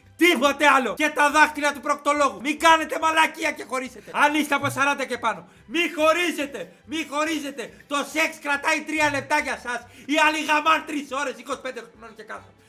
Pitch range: 260-305 Hz